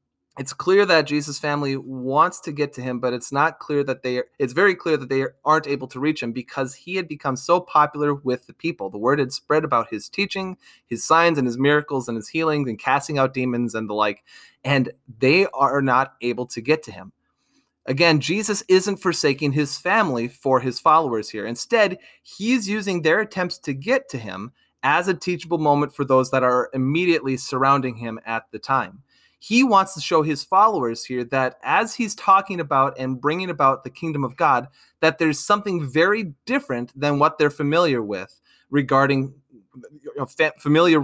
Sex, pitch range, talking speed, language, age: male, 130-170 Hz, 190 wpm, English, 30-49